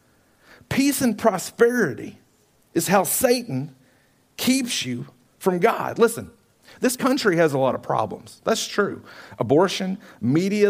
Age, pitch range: 40-59, 165-235 Hz